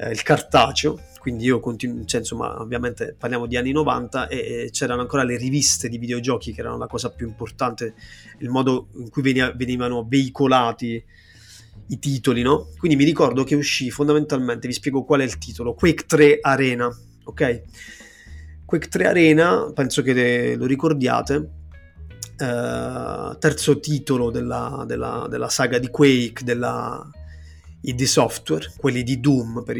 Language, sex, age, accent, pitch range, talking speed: Italian, male, 30-49, native, 115-145 Hz, 155 wpm